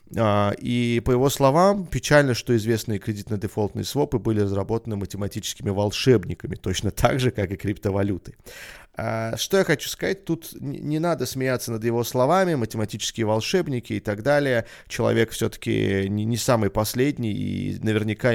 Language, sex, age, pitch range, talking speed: Russian, male, 30-49, 100-130 Hz, 135 wpm